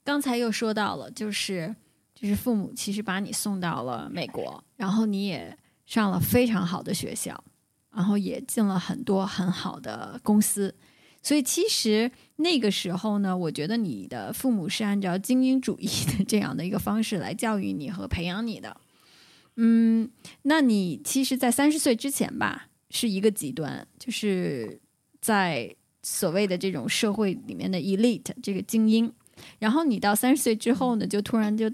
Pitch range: 190-230 Hz